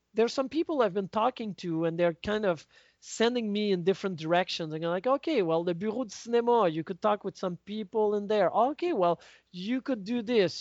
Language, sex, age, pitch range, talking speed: English, male, 40-59, 170-225 Hz, 220 wpm